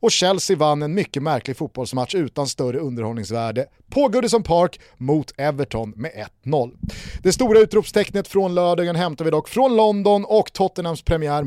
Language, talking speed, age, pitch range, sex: Swedish, 155 wpm, 30-49, 140-210 Hz, male